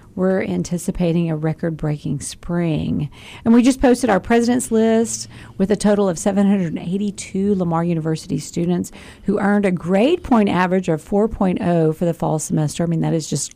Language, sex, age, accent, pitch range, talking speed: English, female, 50-69, American, 165-215 Hz, 165 wpm